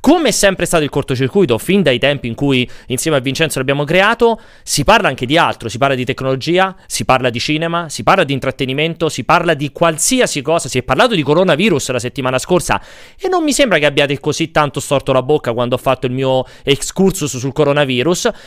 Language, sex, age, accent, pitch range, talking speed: Italian, male, 30-49, native, 130-205 Hz, 210 wpm